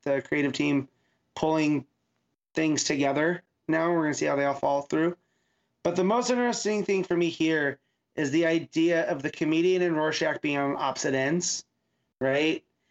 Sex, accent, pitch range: male, American, 140-165 Hz